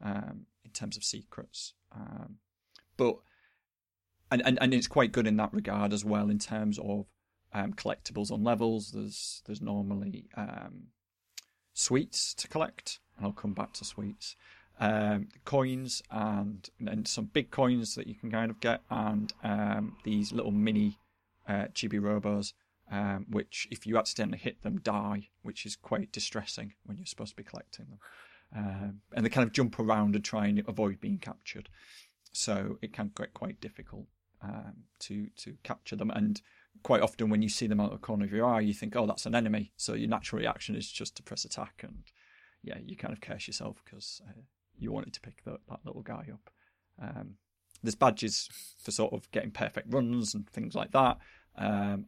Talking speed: 190 wpm